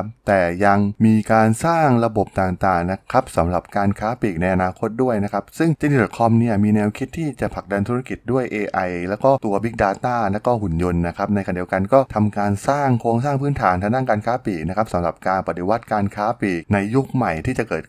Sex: male